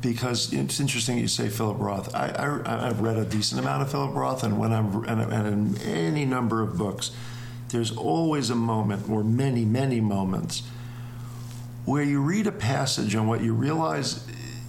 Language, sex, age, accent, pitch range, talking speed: English, male, 50-69, American, 115-130 Hz, 175 wpm